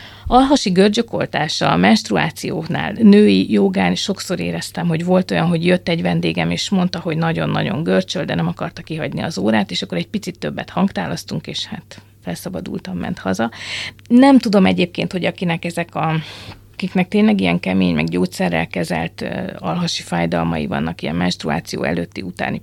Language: Hungarian